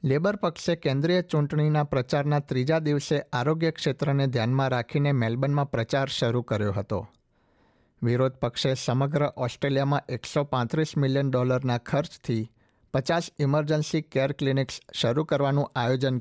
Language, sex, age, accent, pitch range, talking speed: Gujarati, male, 60-79, native, 120-145 Hz, 115 wpm